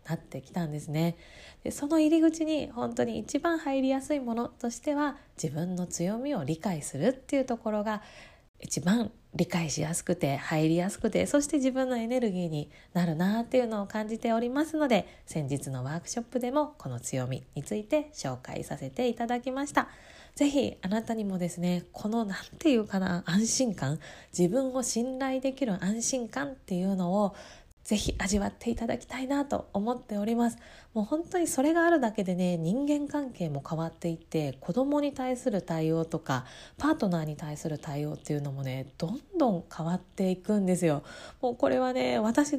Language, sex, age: Japanese, female, 20-39